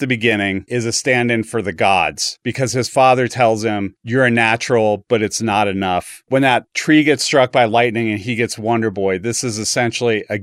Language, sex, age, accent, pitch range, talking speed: English, male, 40-59, American, 105-125 Hz, 215 wpm